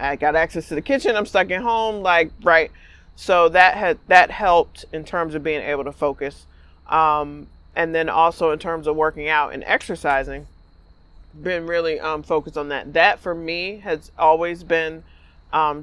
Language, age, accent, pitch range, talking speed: English, 30-49, American, 145-175 Hz, 180 wpm